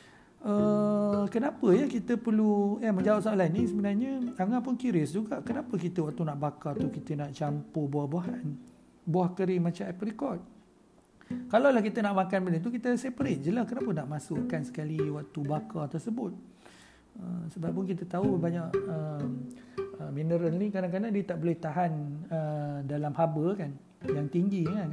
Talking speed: 160 wpm